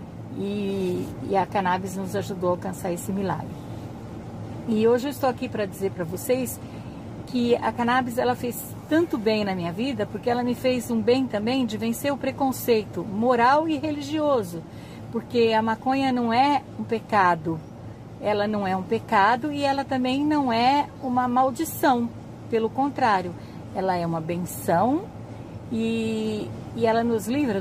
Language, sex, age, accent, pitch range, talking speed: Portuguese, female, 50-69, Brazilian, 185-240 Hz, 160 wpm